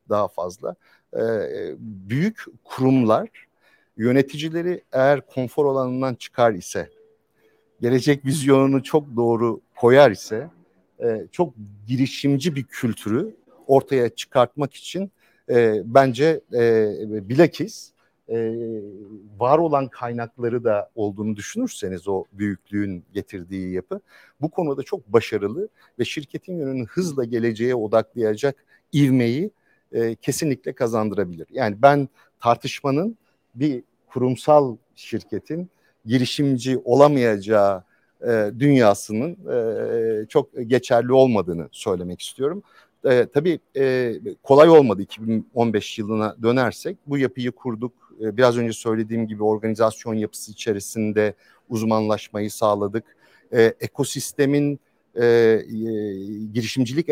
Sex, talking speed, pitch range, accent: male, 85 wpm, 110-140 Hz, Turkish